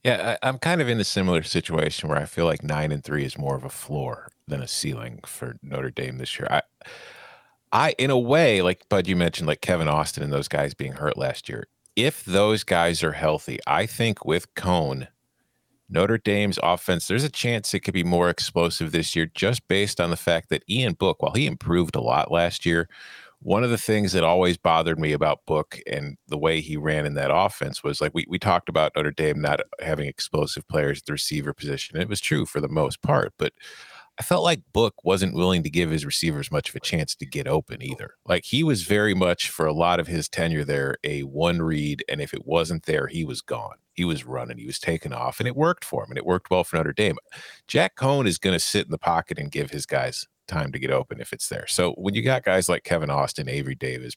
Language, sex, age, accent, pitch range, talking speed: English, male, 40-59, American, 75-100 Hz, 240 wpm